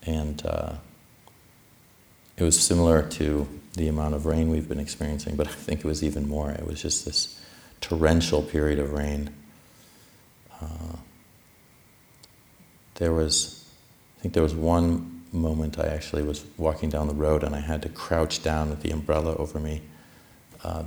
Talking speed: 160 wpm